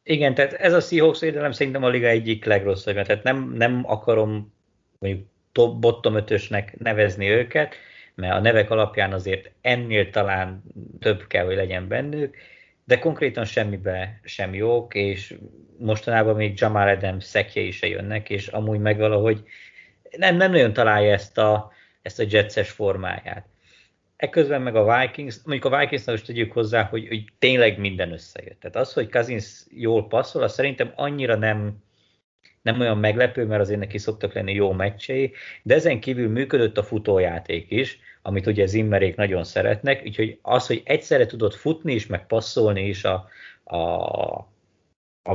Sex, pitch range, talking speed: male, 100-120 Hz, 160 wpm